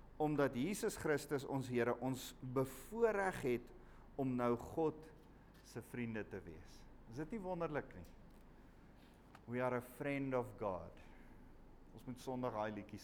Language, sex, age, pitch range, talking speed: English, male, 50-69, 115-160 Hz, 140 wpm